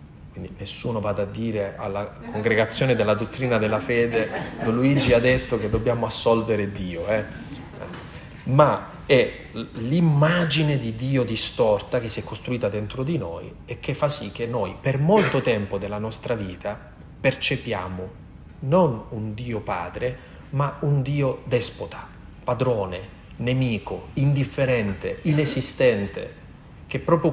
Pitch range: 105-135 Hz